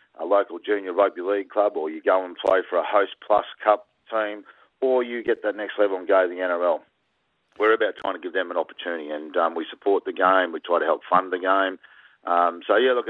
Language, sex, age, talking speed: English, male, 40-59, 245 wpm